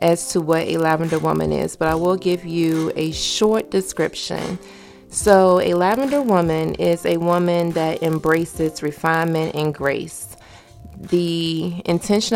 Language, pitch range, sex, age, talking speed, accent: English, 160-190 Hz, female, 30-49, 140 wpm, American